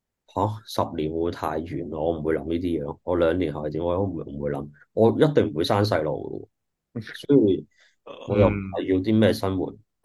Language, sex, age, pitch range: Chinese, male, 20-39, 85-105 Hz